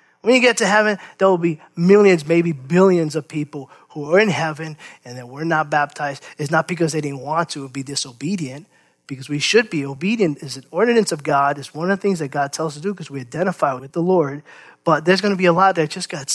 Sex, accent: male, American